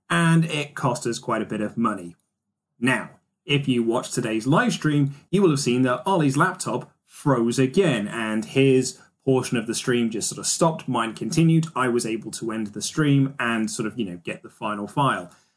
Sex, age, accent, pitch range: male, 10-29, British, 120-170 Hz